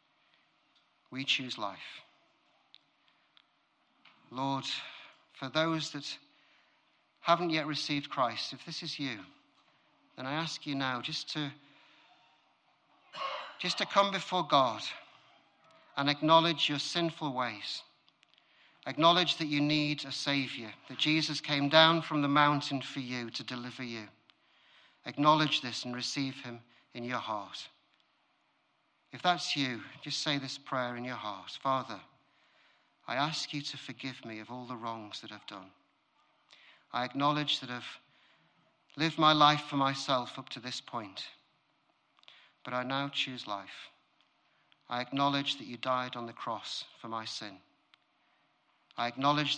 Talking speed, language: 135 wpm, English